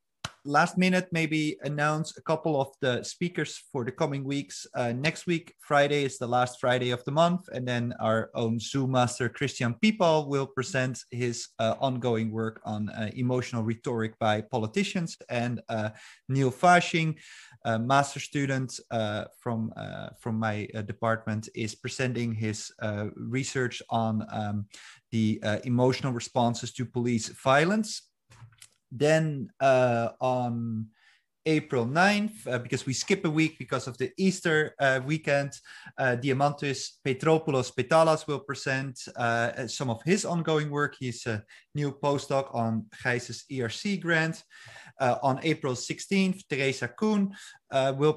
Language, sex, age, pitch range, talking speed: English, male, 30-49, 120-155 Hz, 145 wpm